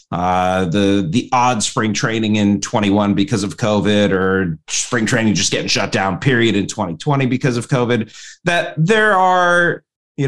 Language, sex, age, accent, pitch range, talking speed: English, male, 30-49, American, 100-145 Hz, 165 wpm